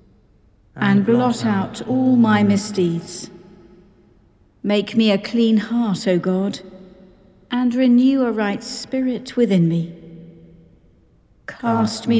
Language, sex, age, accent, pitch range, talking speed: English, female, 60-79, British, 185-225 Hz, 110 wpm